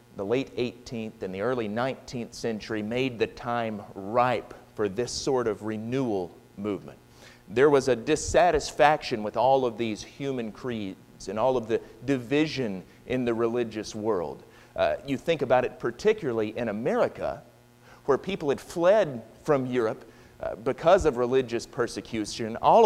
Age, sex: 40-59, male